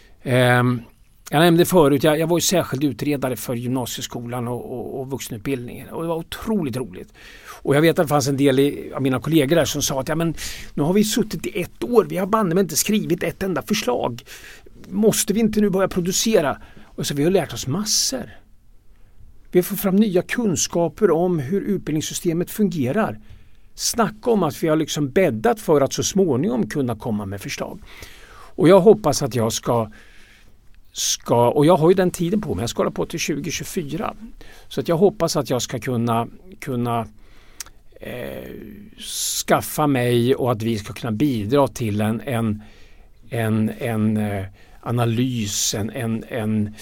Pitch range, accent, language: 115-175 Hz, native, Swedish